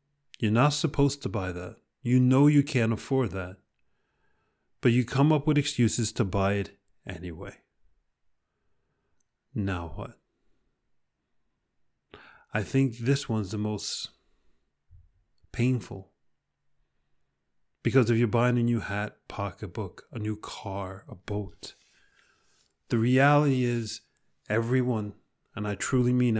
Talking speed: 120 wpm